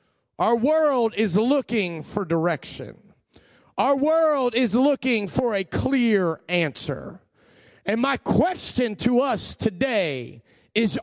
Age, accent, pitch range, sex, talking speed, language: 40-59, American, 155-215 Hz, male, 115 wpm, English